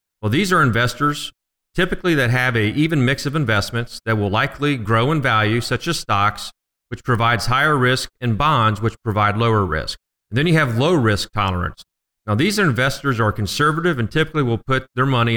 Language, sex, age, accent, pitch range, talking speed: English, male, 40-59, American, 105-135 Hz, 190 wpm